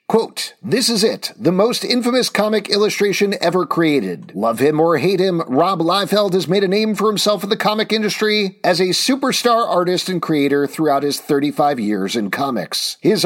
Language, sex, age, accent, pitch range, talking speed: English, male, 50-69, American, 145-195 Hz, 185 wpm